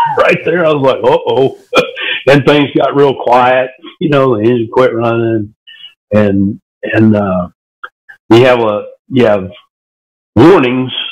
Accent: American